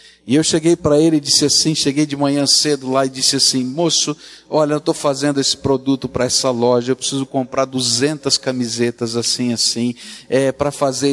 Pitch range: 125-165 Hz